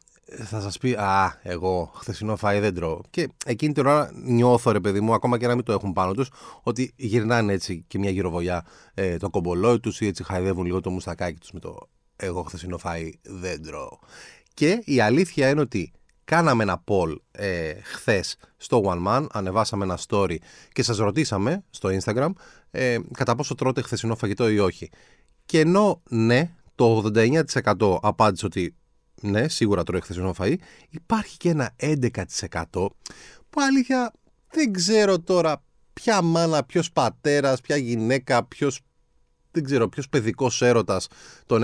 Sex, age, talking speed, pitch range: male, 30-49, 160 wpm, 95-140 Hz